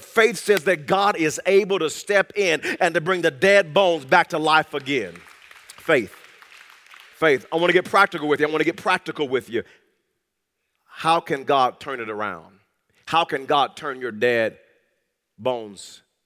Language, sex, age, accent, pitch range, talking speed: English, male, 40-59, American, 120-175 Hz, 175 wpm